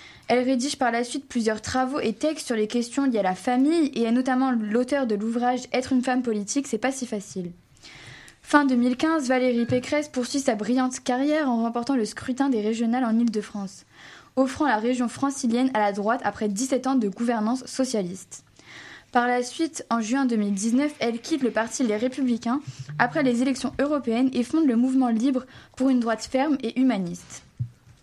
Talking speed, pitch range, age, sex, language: 190 wpm, 225-265 Hz, 10-29, female, French